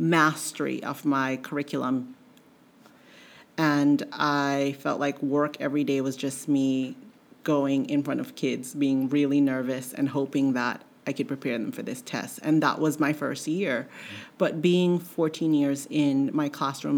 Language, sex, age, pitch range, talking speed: English, female, 40-59, 140-165 Hz, 160 wpm